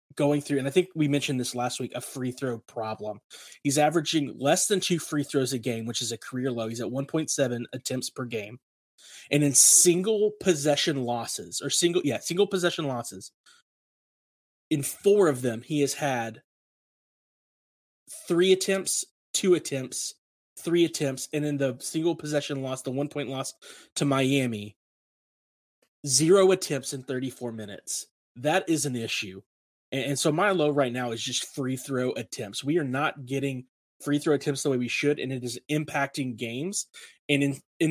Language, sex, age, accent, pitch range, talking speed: English, male, 30-49, American, 125-150 Hz, 170 wpm